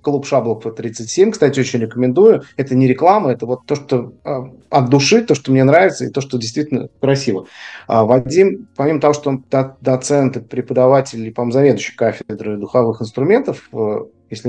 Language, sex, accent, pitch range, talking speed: Russian, male, native, 120-145 Hz, 175 wpm